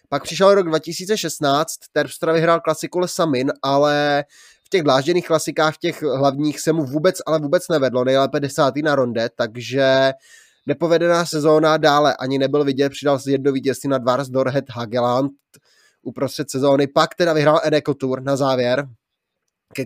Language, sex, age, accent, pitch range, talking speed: Czech, male, 20-39, native, 135-155 Hz, 150 wpm